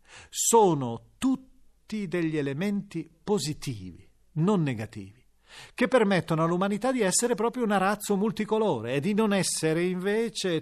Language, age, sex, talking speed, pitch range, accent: Italian, 40-59, male, 120 wpm, 120-180 Hz, native